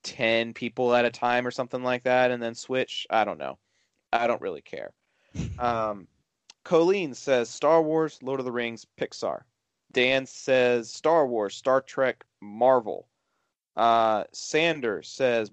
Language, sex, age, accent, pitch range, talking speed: English, male, 30-49, American, 120-140 Hz, 150 wpm